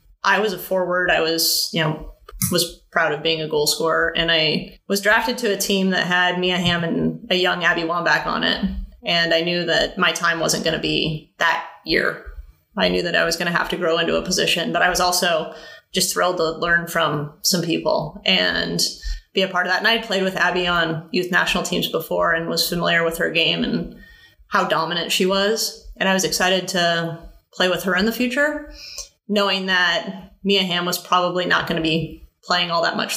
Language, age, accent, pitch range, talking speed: English, 20-39, American, 165-190 Hz, 215 wpm